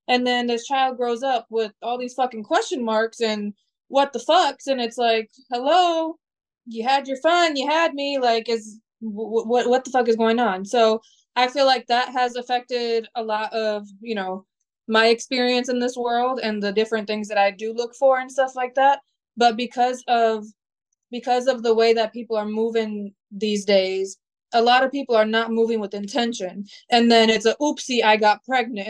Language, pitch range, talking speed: English, 225-260 Hz, 195 wpm